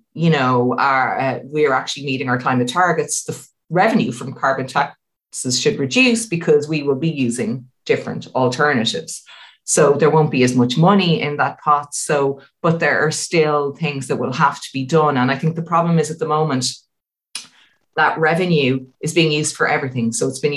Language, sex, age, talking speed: English, female, 30-49, 185 wpm